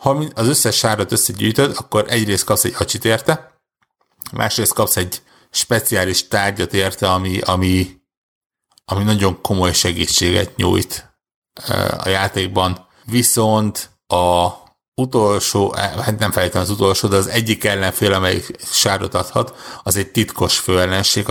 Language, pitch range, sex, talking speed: Hungarian, 95-110 Hz, male, 125 wpm